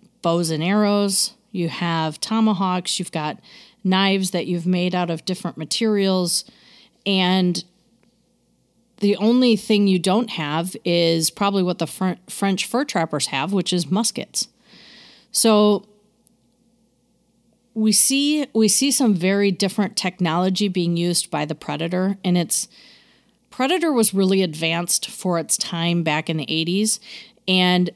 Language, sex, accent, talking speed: English, female, American, 135 wpm